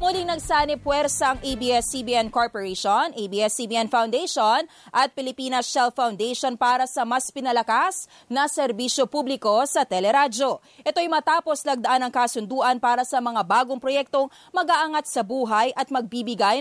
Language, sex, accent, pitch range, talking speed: English, female, Filipino, 240-290 Hz, 130 wpm